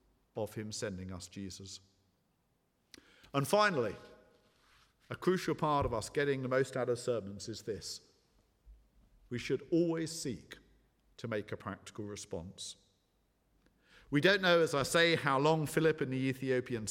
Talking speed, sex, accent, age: 145 wpm, male, British, 50-69